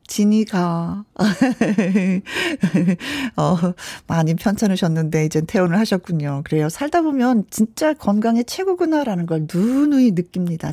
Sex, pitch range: female, 170-255 Hz